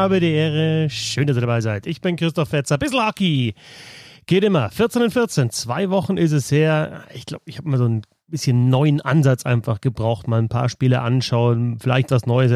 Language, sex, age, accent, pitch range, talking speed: German, male, 30-49, German, 120-155 Hz, 215 wpm